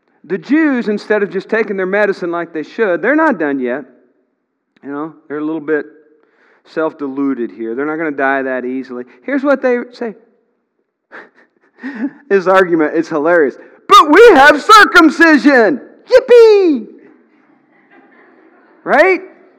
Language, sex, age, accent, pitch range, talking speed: English, male, 40-59, American, 230-315 Hz, 135 wpm